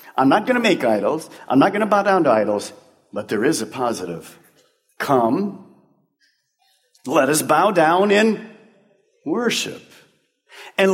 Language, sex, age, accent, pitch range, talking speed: English, male, 50-69, American, 180-255 Hz, 150 wpm